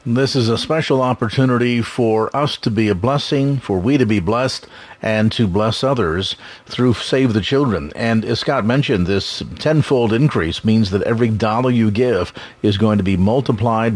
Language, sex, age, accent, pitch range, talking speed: English, male, 40-59, American, 110-135 Hz, 180 wpm